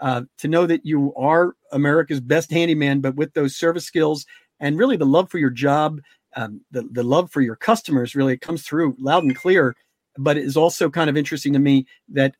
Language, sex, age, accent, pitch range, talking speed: English, male, 50-69, American, 135-170 Hz, 215 wpm